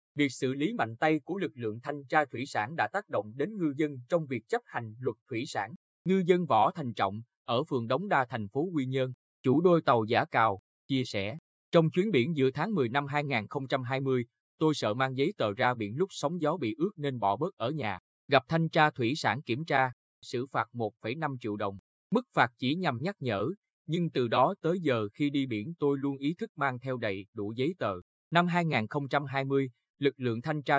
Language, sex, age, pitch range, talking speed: Vietnamese, male, 20-39, 115-150 Hz, 220 wpm